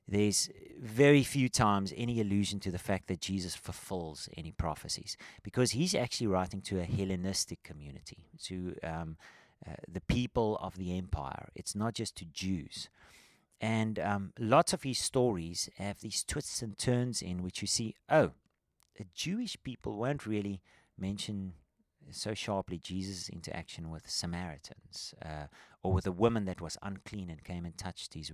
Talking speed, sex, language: 160 wpm, male, English